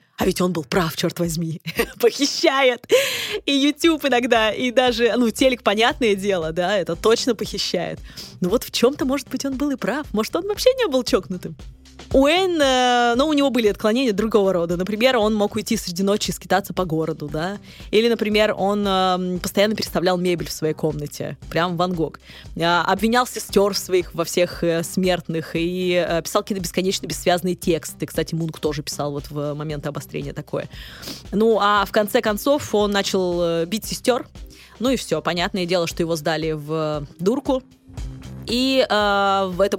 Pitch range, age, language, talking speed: 175-230 Hz, 20-39, Russian, 170 wpm